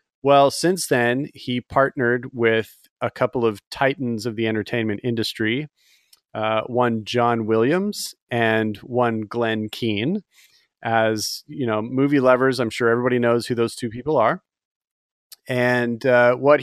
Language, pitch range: English, 110-125 Hz